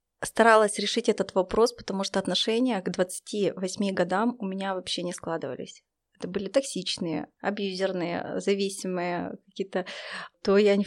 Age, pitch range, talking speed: 20-39, 190-235 Hz, 135 wpm